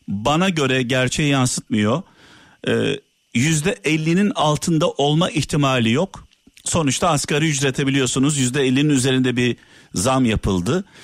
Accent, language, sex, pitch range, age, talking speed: native, Turkish, male, 135-190 Hz, 50-69, 105 wpm